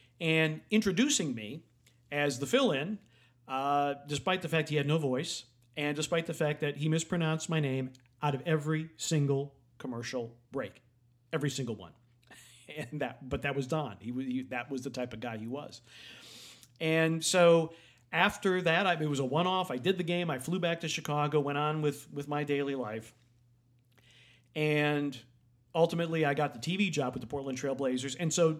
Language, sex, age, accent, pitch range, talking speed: English, male, 40-59, American, 125-160 Hz, 180 wpm